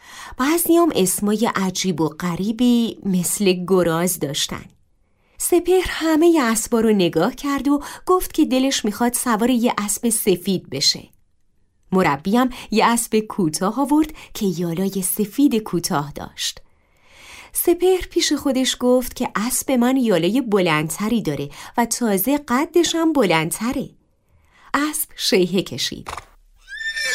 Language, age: Persian, 30-49